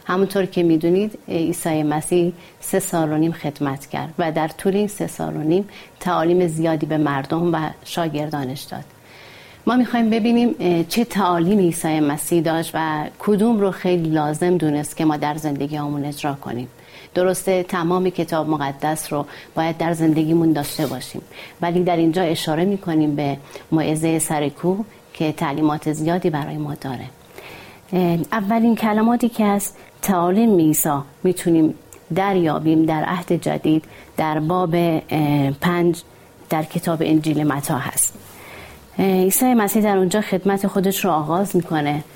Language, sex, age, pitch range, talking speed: Persian, female, 30-49, 155-185 Hz, 140 wpm